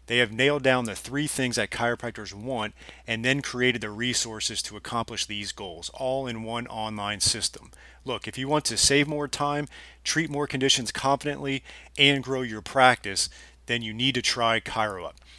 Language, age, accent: English, 30-49, American